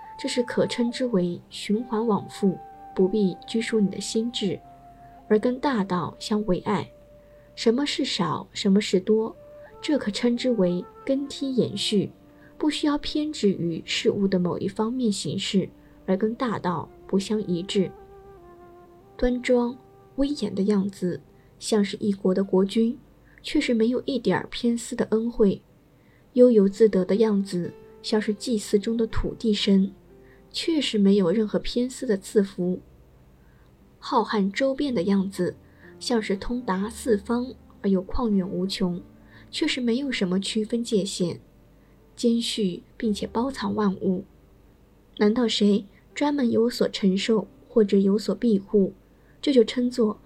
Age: 20-39